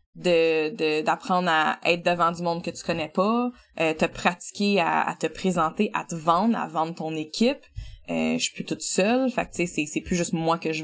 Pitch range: 165-205 Hz